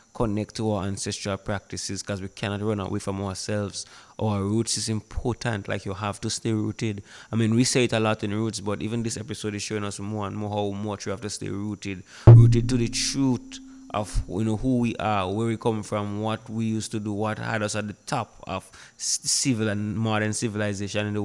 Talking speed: 225 wpm